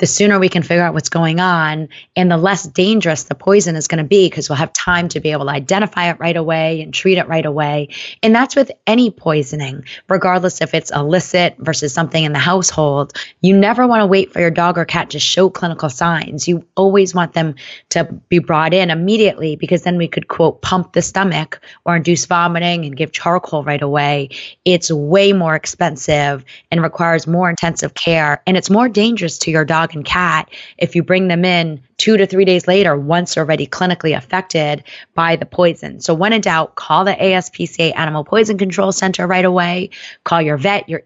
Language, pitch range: English, 160-190 Hz